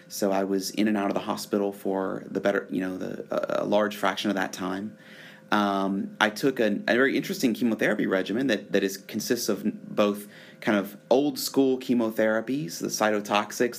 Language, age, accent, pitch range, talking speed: English, 30-49, American, 95-110 Hz, 185 wpm